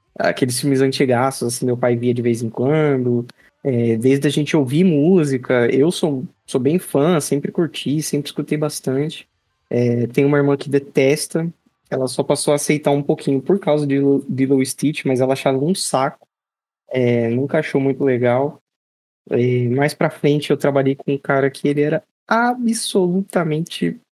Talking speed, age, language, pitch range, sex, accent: 170 wpm, 20-39, Portuguese, 135-165 Hz, male, Brazilian